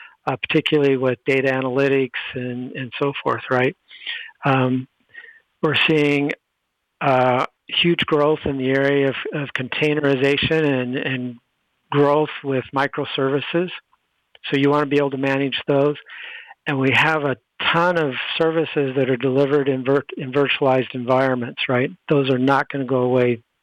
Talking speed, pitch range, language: 145 wpm, 130-150 Hz, English